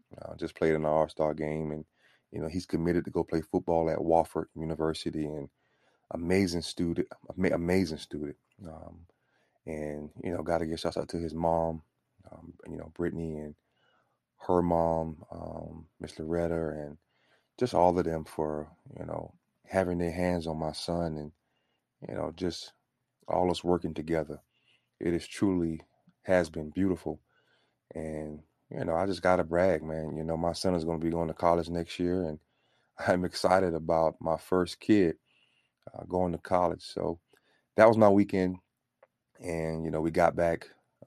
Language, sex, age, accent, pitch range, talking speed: English, male, 30-49, American, 80-90 Hz, 170 wpm